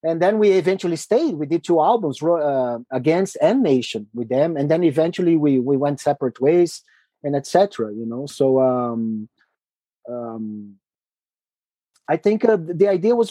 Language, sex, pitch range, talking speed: English, male, 145-220 Hz, 165 wpm